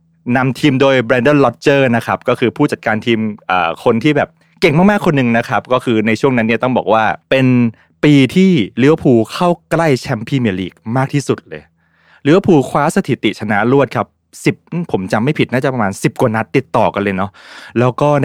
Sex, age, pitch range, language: male, 20-39, 105-140 Hz, Thai